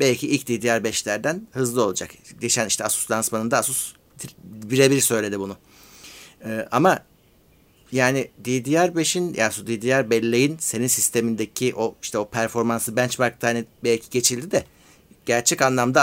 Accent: native